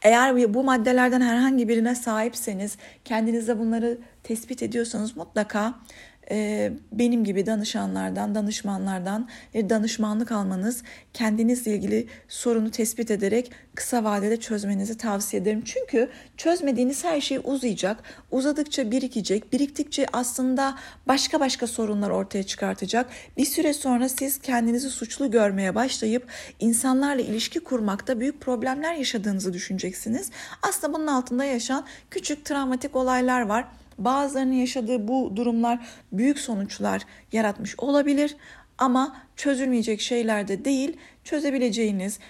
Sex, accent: female, native